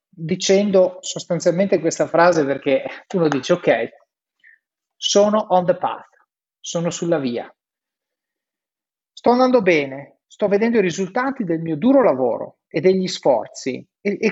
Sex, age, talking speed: male, 30-49, 130 wpm